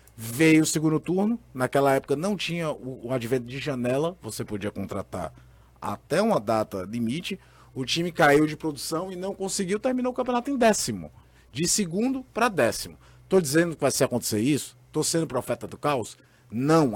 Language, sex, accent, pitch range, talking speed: Portuguese, male, Brazilian, 130-195 Hz, 170 wpm